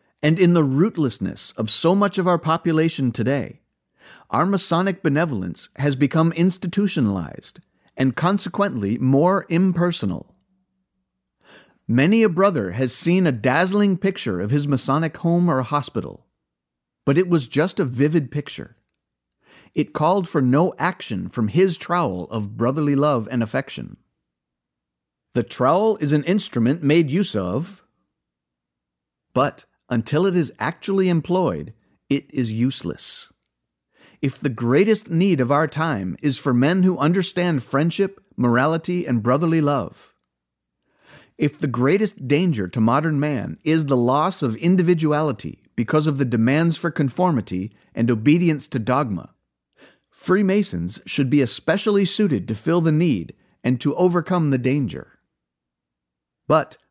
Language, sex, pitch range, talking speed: English, male, 120-175 Hz, 135 wpm